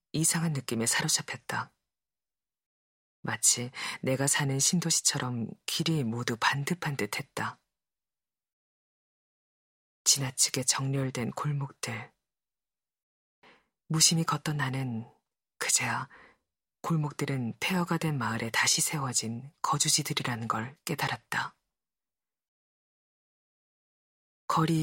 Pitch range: 115-155 Hz